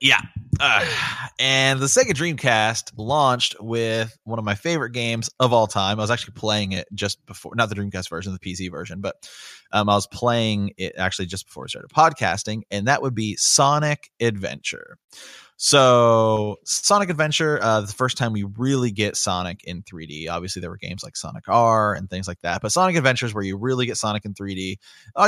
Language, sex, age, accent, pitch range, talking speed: English, male, 20-39, American, 100-125 Hz, 200 wpm